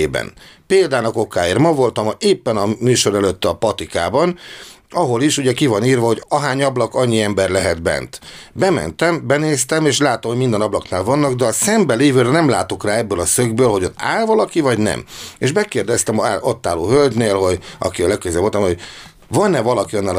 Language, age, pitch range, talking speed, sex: Hungarian, 60-79, 120-160 Hz, 185 wpm, male